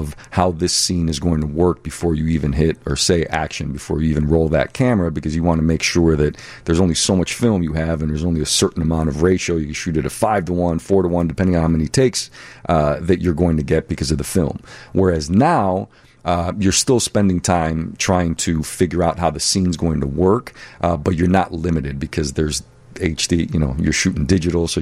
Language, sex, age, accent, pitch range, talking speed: English, male, 40-59, American, 80-90 Hz, 240 wpm